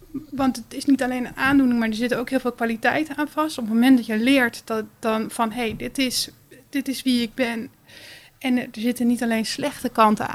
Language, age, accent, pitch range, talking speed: Dutch, 20-39, Dutch, 225-265 Hz, 240 wpm